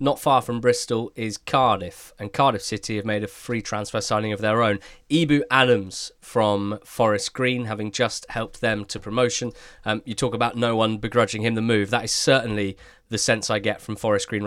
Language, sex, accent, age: English, male, British, 20-39